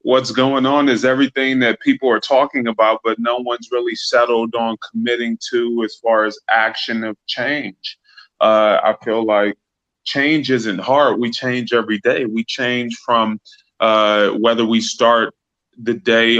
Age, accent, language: 20-39, American, English